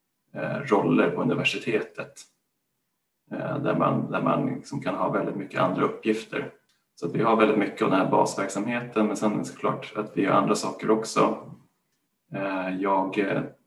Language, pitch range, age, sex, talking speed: Swedish, 100-115 Hz, 20-39, male, 160 wpm